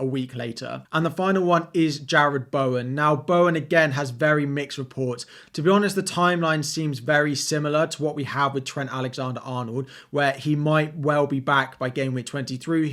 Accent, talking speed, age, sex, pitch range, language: British, 195 wpm, 20-39, male, 130-155 Hz, English